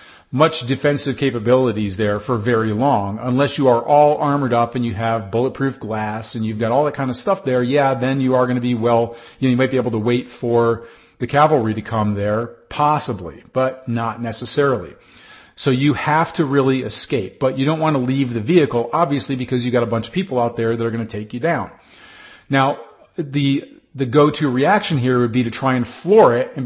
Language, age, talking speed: English, 40-59, 220 wpm